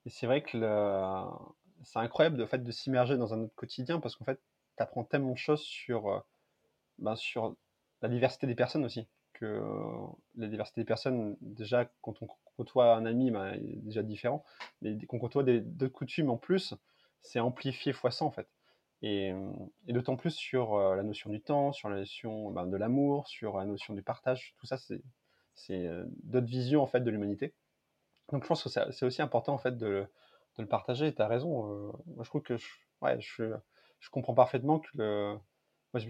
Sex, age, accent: male, 20-39, French